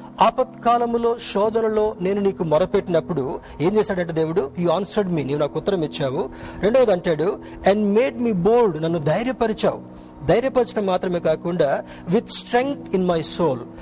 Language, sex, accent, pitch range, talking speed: Telugu, male, native, 160-220 Hz, 120 wpm